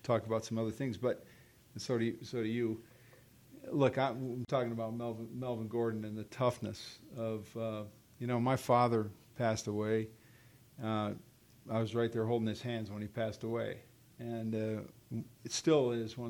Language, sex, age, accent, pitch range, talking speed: English, male, 40-59, American, 110-120 Hz, 180 wpm